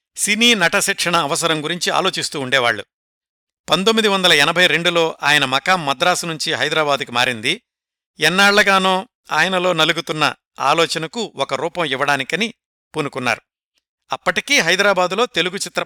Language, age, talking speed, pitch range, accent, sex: Telugu, 60-79, 105 wpm, 150-190 Hz, native, male